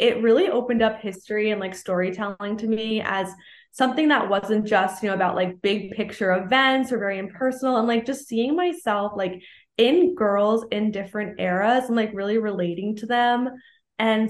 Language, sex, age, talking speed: English, female, 20-39, 180 wpm